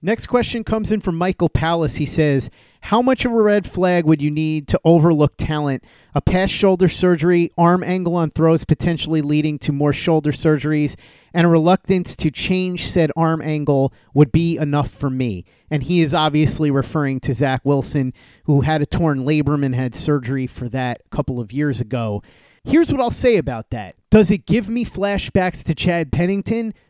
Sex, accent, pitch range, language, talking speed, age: male, American, 140-175 Hz, English, 190 wpm, 30-49